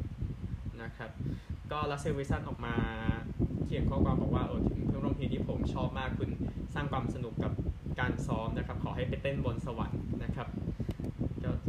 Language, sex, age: Thai, male, 20-39